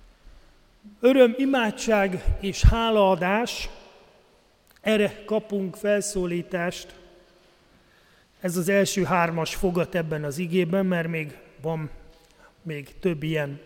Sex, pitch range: male, 160-210 Hz